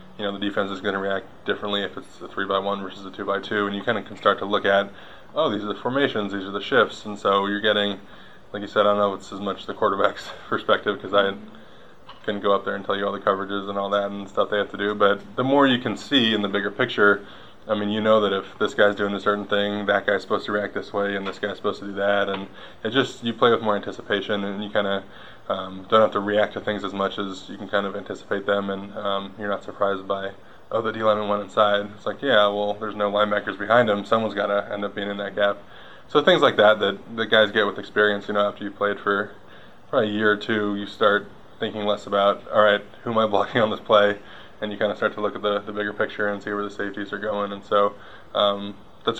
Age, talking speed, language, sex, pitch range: 20-39, 280 wpm, English, male, 100-105 Hz